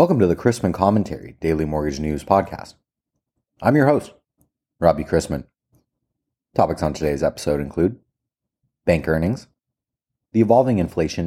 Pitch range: 80-115 Hz